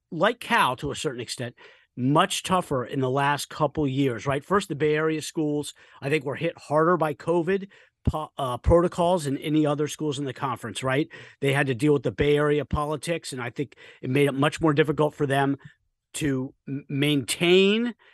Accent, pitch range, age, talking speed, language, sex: American, 140-180 Hz, 40-59, 190 wpm, English, male